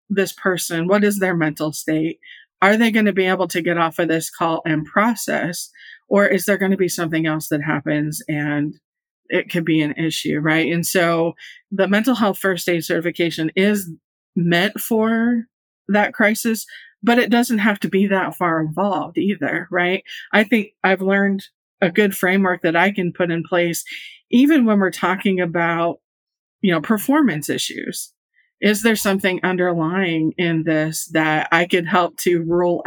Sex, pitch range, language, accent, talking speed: female, 165-205 Hz, English, American, 175 wpm